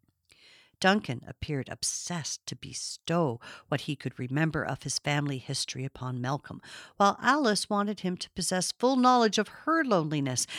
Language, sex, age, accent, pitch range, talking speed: English, female, 50-69, American, 155-225 Hz, 145 wpm